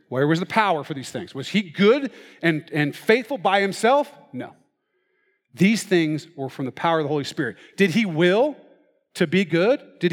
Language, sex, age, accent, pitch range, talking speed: English, male, 40-59, American, 135-185 Hz, 195 wpm